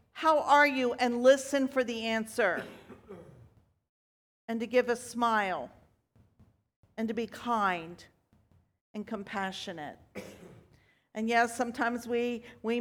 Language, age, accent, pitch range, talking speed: English, 50-69, American, 205-245 Hz, 110 wpm